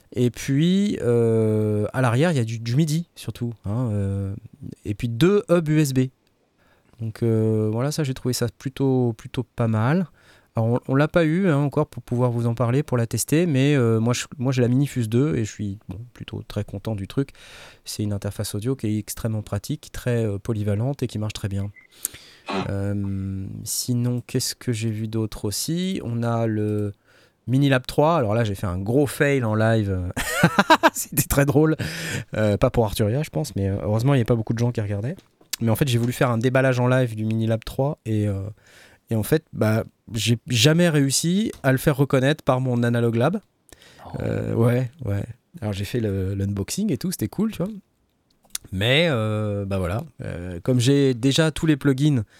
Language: French